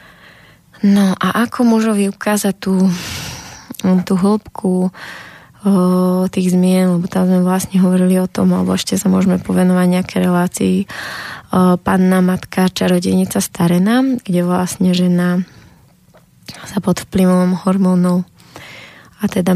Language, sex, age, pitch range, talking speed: Slovak, female, 20-39, 180-195 Hz, 125 wpm